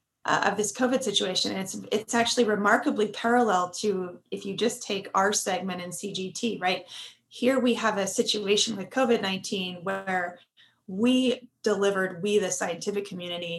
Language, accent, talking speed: English, American, 155 wpm